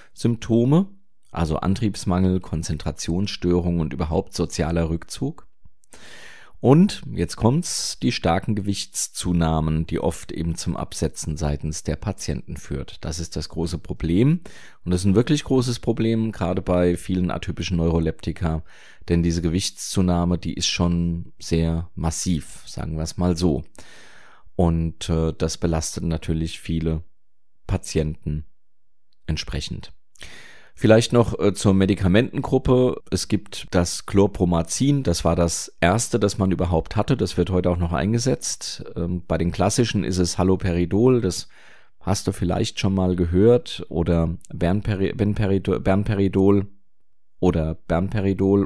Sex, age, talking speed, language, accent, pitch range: male, 30-49, 120 wpm, German, German, 80-100 Hz